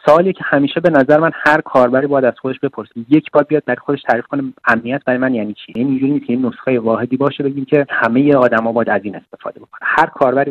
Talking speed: 230 wpm